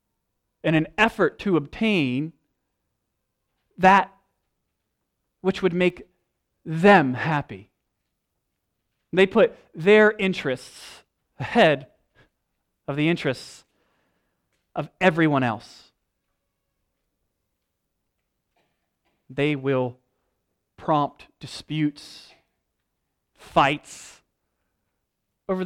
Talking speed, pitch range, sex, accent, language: 65 wpm, 120-165 Hz, male, American, English